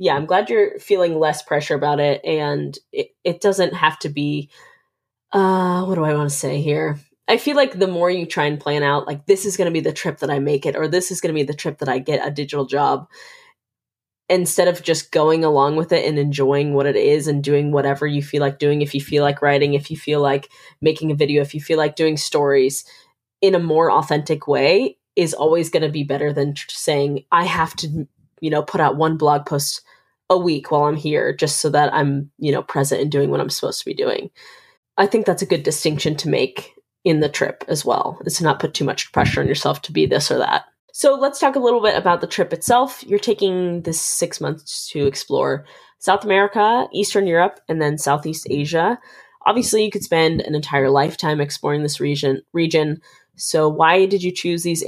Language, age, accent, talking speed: English, 20-39, American, 230 wpm